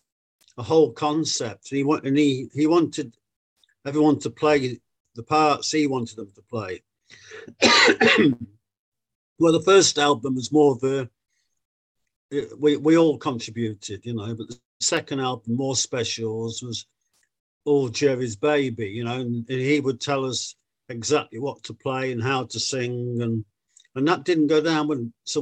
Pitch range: 115-150 Hz